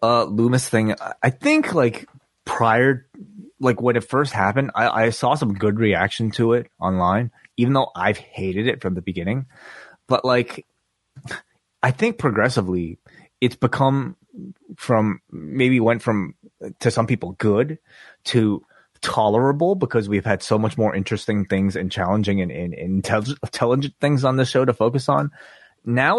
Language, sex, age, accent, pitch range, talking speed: English, male, 20-39, American, 100-135 Hz, 155 wpm